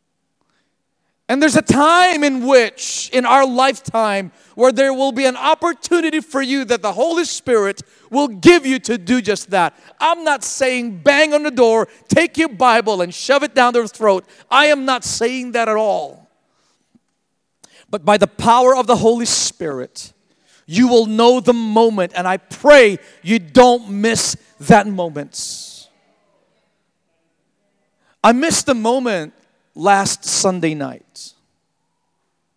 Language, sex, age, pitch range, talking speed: English, male, 40-59, 180-255 Hz, 145 wpm